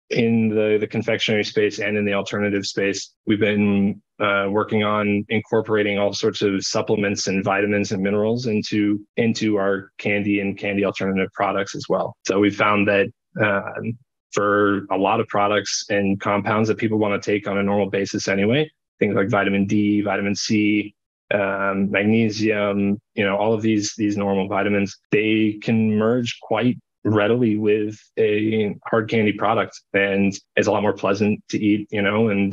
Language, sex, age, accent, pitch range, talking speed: English, male, 20-39, American, 100-110 Hz, 170 wpm